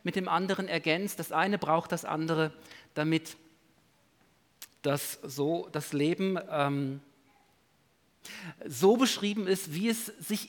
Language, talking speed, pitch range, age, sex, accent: German, 115 wpm, 145-195 Hz, 50-69, male, German